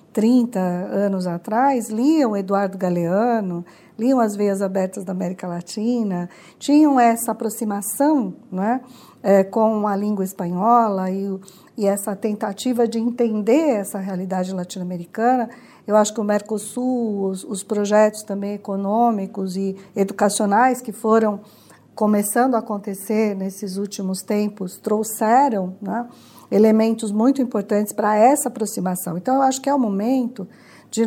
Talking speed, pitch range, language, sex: 130 wpm, 195-240 Hz, Portuguese, female